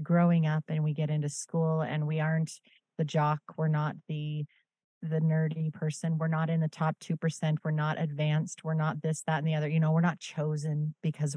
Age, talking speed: 30-49, 215 wpm